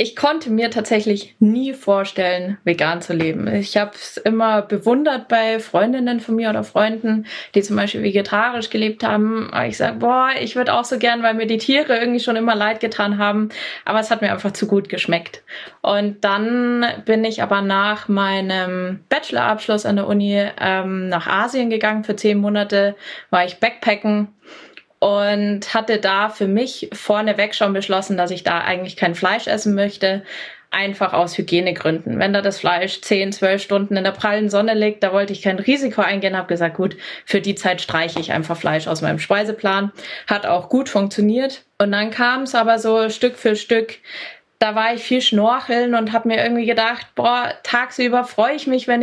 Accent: German